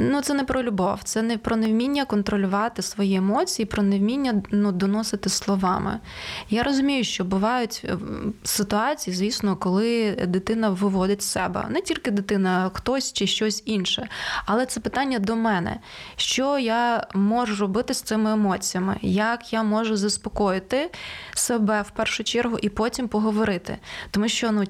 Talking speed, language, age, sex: 150 wpm, Ukrainian, 20-39, female